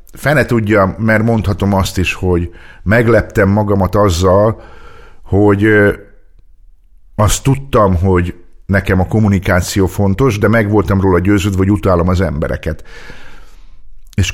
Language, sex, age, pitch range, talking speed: Hungarian, male, 50-69, 90-110 Hz, 115 wpm